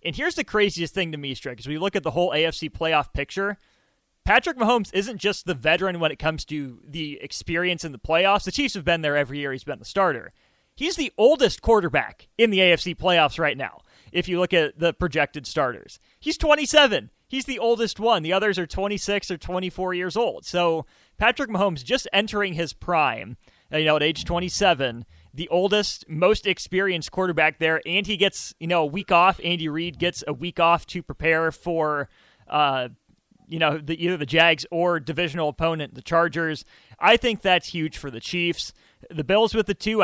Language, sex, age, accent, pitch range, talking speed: English, male, 30-49, American, 150-190 Hz, 200 wpm